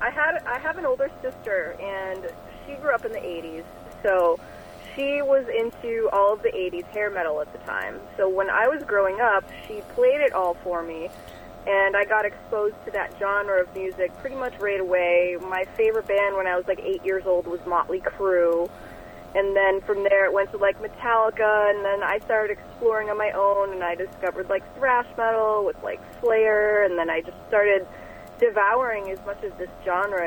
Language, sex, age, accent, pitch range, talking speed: English, female, 20-39, American, 190-270 Hz, 200 wpm